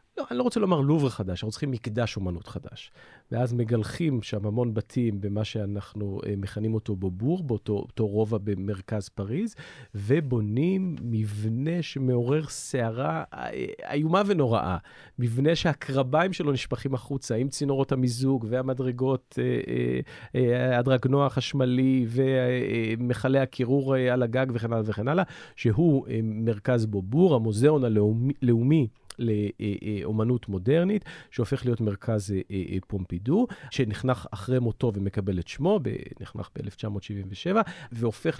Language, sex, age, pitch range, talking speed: Hebrew, male, 40-59, 105-140 Hz, 120 wpm